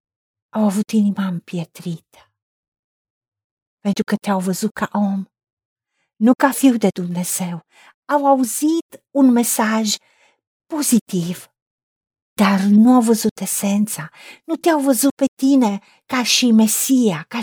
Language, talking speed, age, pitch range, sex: Romanian, 120 wpm, 50-69, 205-265 Hz, female